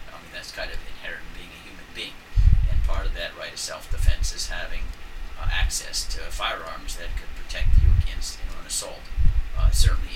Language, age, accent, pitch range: English, 50-69, American, 75-90 Hz